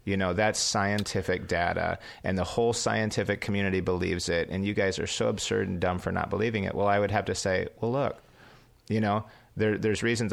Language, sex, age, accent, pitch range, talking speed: English, male, 40-59, American, 95-120 Hz, 215 wpm